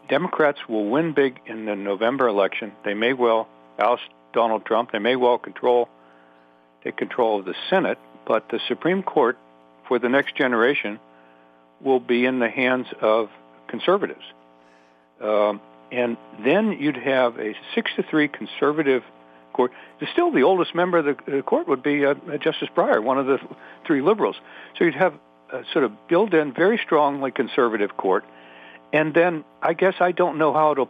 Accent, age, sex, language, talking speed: American, 60-79, male, English, 165 wpm